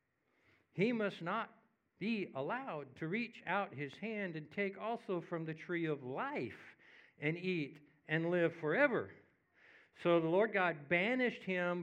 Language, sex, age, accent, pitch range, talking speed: English, male, 60-79, American, 125-170 Hz, 145 wpm